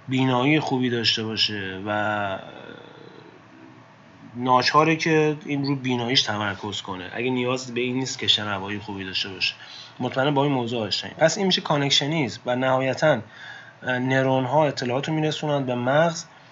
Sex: male